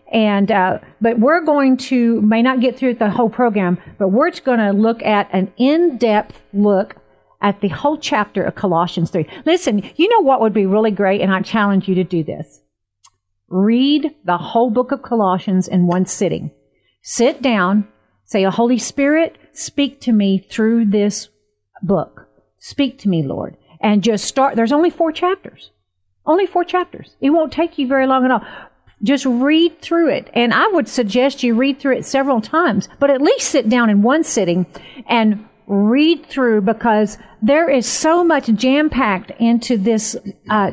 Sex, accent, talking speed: female, American, 185 wpm